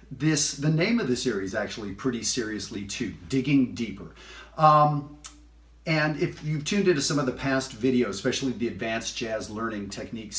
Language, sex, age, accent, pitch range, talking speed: English, male, 40-59, American, 105-135 Hz, 170 wpm